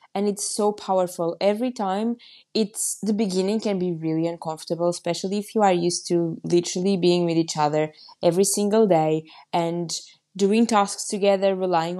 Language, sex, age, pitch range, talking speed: English, female, 20-39, 170-205 Hz, 160 wpm